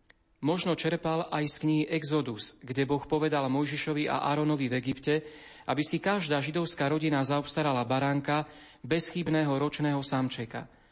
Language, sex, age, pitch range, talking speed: Slovak, male, 40-59, 135-155 Hz, 130 wpm